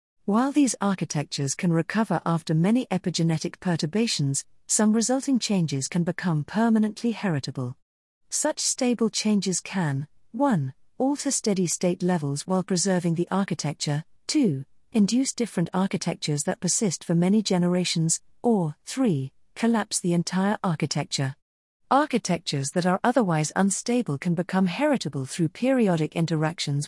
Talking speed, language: 125 wpm, English